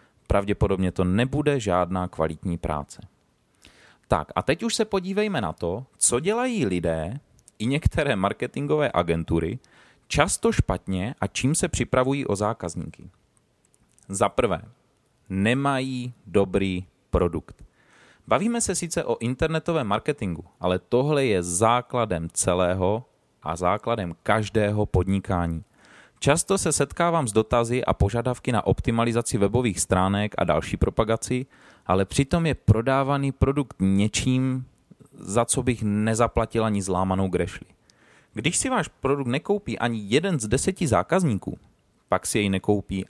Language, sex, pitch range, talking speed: Czech, male, 95-130 Hz, 125 wpm